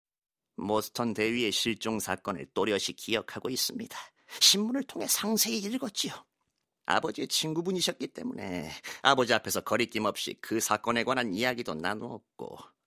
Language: Korean